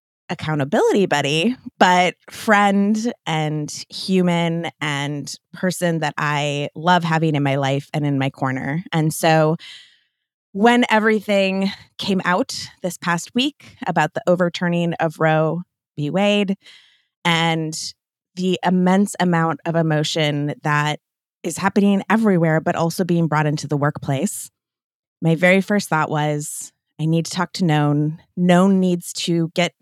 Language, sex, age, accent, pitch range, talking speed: English, female, 20-39, American, 155-195 Hz, 135 wpm